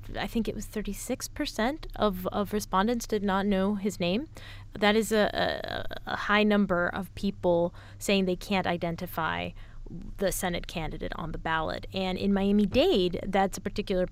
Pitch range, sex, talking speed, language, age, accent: 175-200 Hz, female, 160 wpm, English, 20-39, American